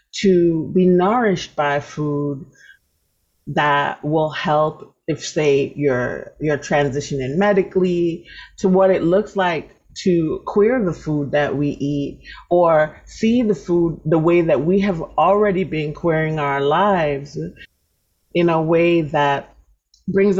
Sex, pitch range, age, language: female, 150-195 Hz, 30-49, English